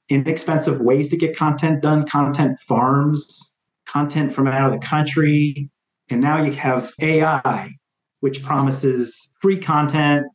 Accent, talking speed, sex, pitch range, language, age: American, 135 wpm, male, 130-160 Hz, English, 40-59